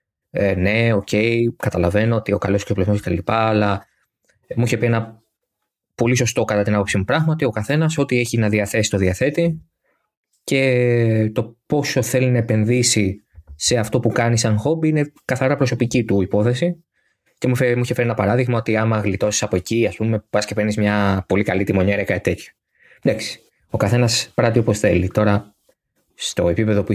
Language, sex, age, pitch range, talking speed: Greek, male, 20-39, 100-120 Hz, 185 wpm